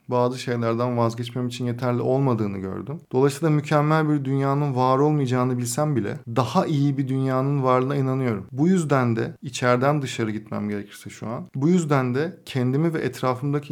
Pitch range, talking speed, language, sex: 120-150 Hz, 160 wpm, Turkish, male